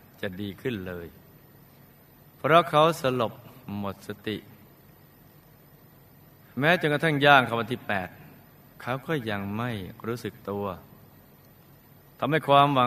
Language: Thai